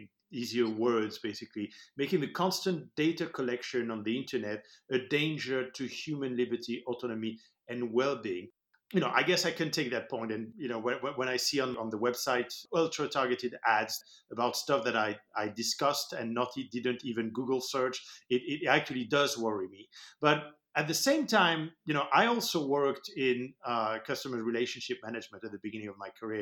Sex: male